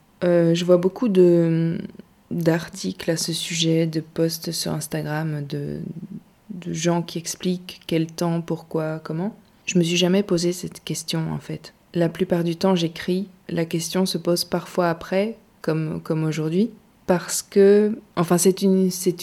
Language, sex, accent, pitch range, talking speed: French, female, French, 165-200 Hz, 160 wpm